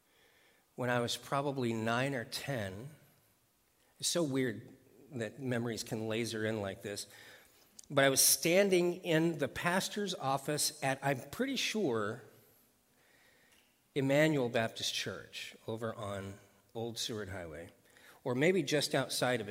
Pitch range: 115-145 Hz